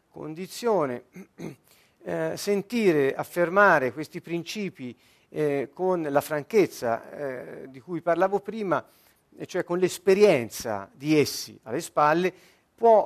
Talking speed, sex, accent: 105 wpm, male, native